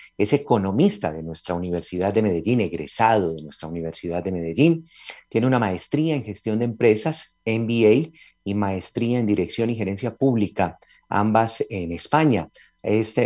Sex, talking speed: male, 145 wpm